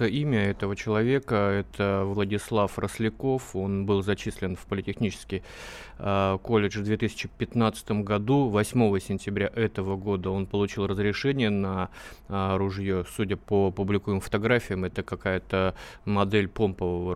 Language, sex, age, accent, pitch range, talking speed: Russian, male, 30-49, native, 95-110 Hz, 120 wpm